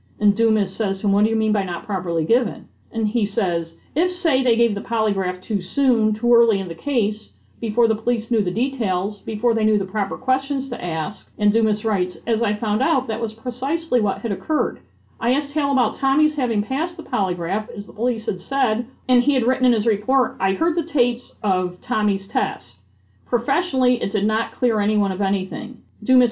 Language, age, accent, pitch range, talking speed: English, 50-69, American, 200-250 Hz, 210 wpm